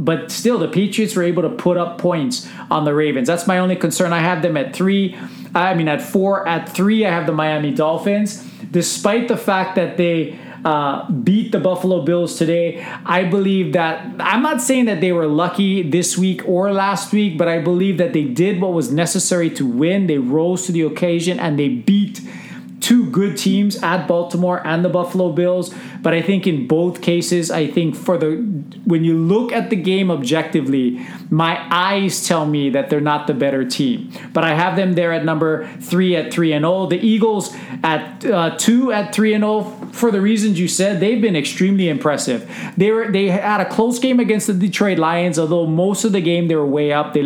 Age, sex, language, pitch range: 30-49, male, English, 160-200 Hz